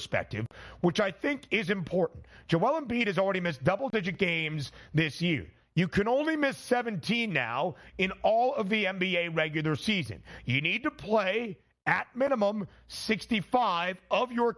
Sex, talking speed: male, 155 wpm